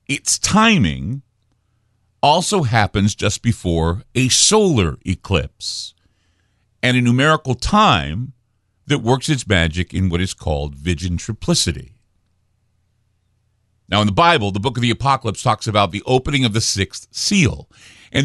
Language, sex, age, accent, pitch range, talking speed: English, male, 50-69, American, 95-125 Hz, 135 wpm